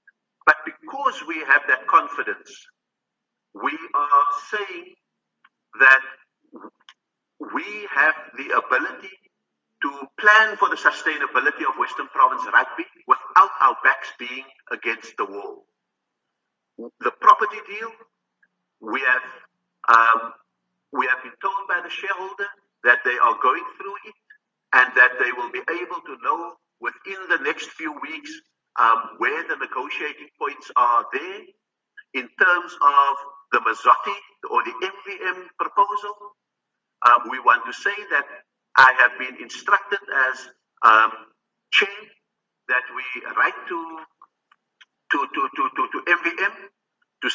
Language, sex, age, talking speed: English, male, 50-69, 130 wpm